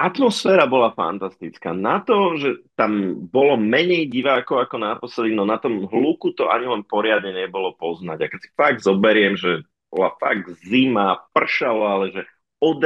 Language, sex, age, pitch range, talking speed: Slovak, male, 30-49, 95-125 Hz, 170 wpm